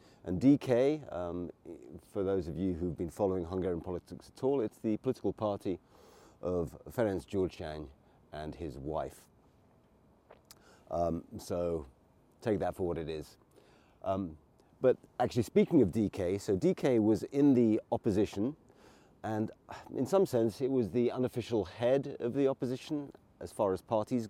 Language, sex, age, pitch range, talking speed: English, male, 40-59, 90-120 Hz, 150 wpm